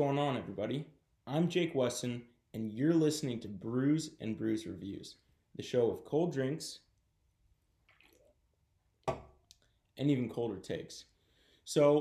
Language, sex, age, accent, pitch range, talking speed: English, male, 20-39, American, 120-155 Hz, 115 wpm